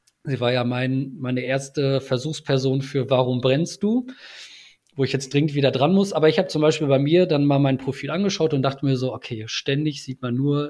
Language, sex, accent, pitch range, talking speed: German, male, German, 135-160 Hz, 220 wpm